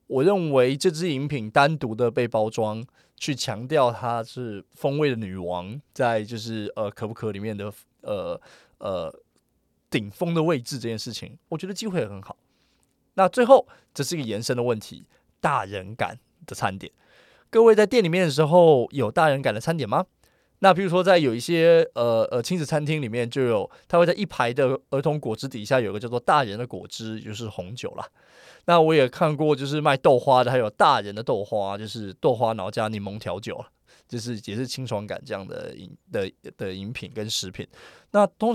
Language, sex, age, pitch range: Chinese, male, 20-39, 110-160 Hz